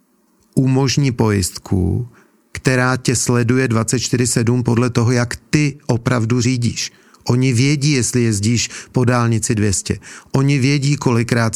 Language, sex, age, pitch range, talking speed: Czech, male, 40-59, 120-135 Hz, 115 wpm